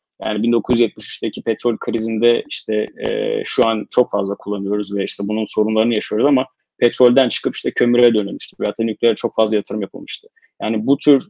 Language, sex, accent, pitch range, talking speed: Turkish, male, native, 105-120 Hz, 165 wpm